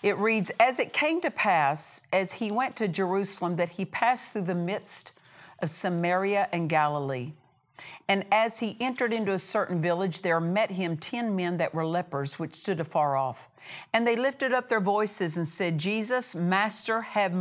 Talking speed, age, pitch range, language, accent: 185 wpm, 50-69, 170-220 Hz, English, American